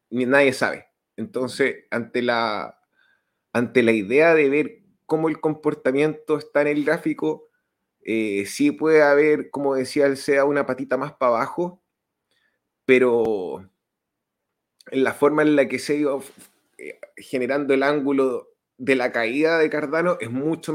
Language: Spanish